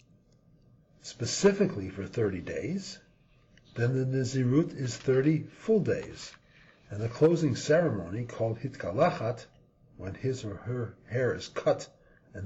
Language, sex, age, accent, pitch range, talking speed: English, male, 50-69, American, 110-145 Hz, 120 wpm